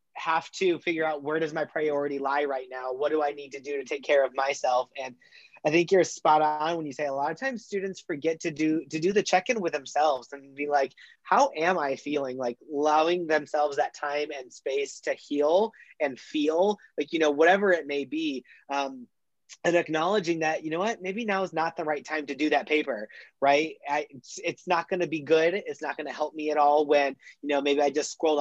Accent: American